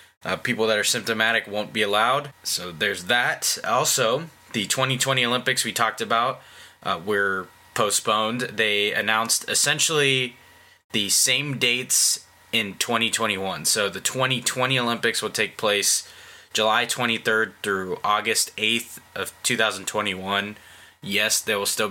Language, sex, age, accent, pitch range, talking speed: English, male, 20-39, American, 100-125 Hz, 130 wpm